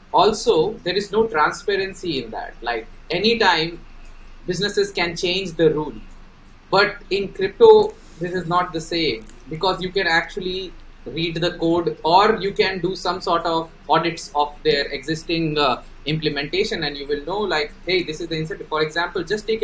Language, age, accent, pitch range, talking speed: English, 20-39, Indian, 145-195 Hz, 170 wpm